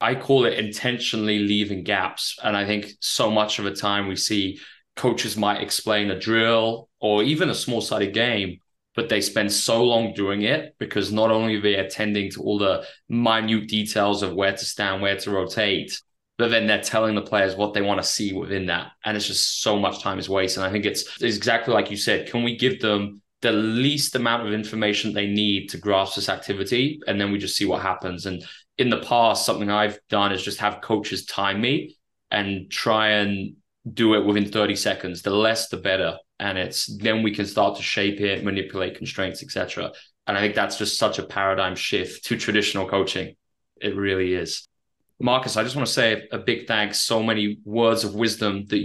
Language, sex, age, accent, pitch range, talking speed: English, male, 20-39, British, 100-115 Hz, 210 wpm